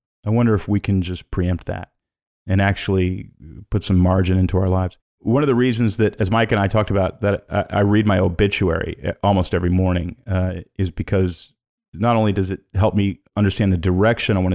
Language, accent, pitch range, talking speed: English, American, 90-110 Hz, 200 wpm